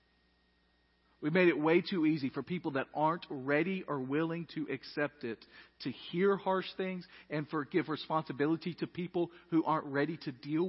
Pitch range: 110-180 Hz